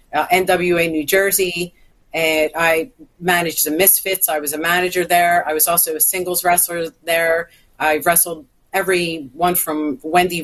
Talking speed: 155 wpm